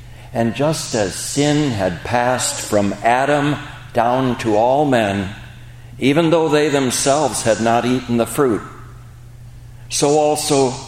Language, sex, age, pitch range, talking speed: English, male, 60-79, 110-130 Hz, 125 wpm